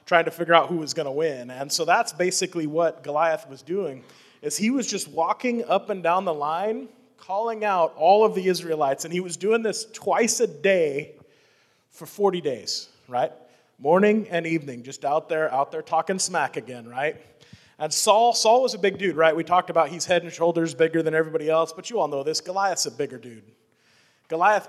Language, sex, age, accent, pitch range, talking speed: English, male, 30-49, American, 155-195 Hz, 210 wpm